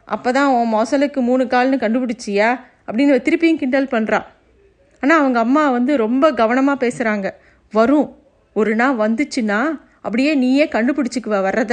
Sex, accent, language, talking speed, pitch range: female, native, Tamil, 125 wpm, 220-275 Hz